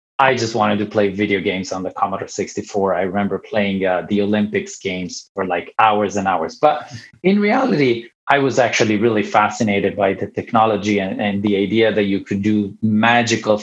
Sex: male